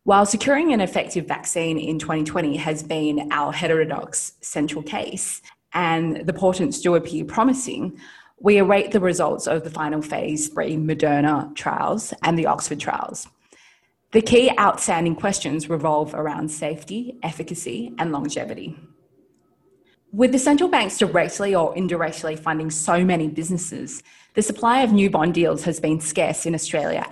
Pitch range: 155-190 Hz